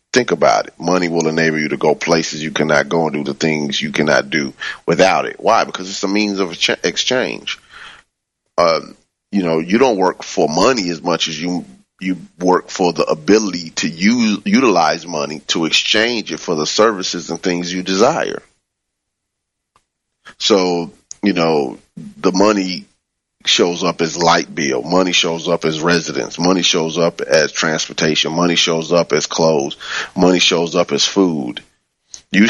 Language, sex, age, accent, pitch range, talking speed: English, male, 30-49, American, 80-95 Hz, 170 wpm